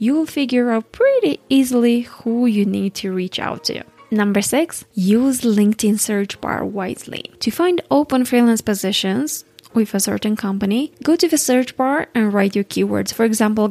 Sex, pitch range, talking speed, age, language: female, 205-265 Hz, 170 wpm, 20-39, English